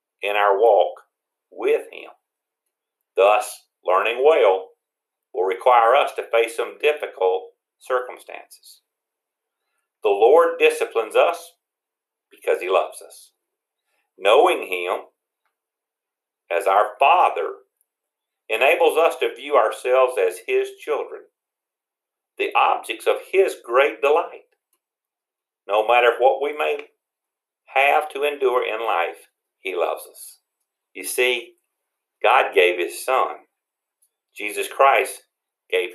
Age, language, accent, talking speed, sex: 50-69, English, American, 110 wpm, male